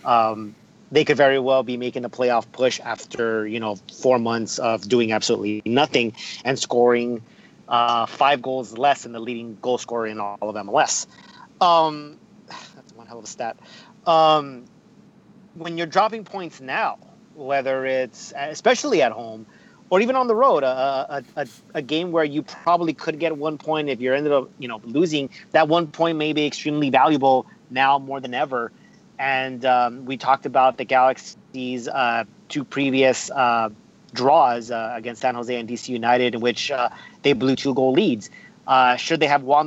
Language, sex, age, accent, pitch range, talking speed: English, male, 30-49, American, 125-155 Hz, 175 wpm